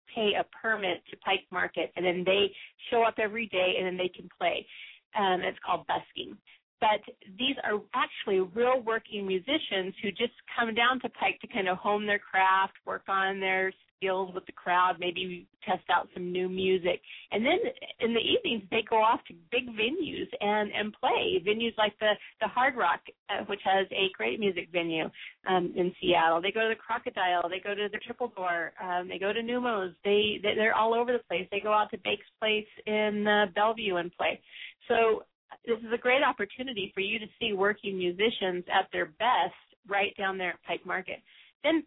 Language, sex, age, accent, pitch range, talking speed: English, female, 30-49, American, 185-230 Hz, 200 wpm